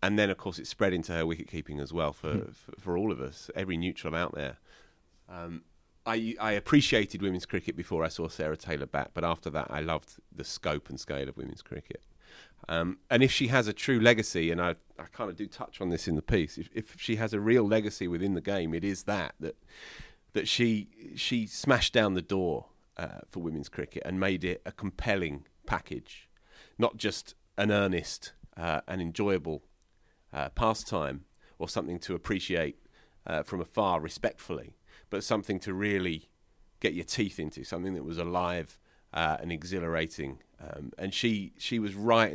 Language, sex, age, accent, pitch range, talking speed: English, male, 30-49, British, 80-110 Hz, 190 wpm